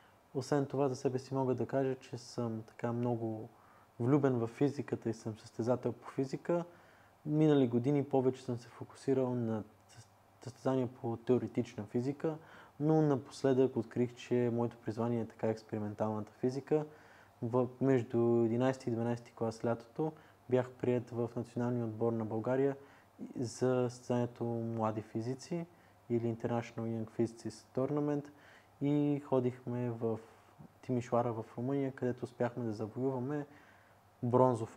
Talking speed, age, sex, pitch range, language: 130 wpm, 20-39, male, 110-130 Hz, Bulgarian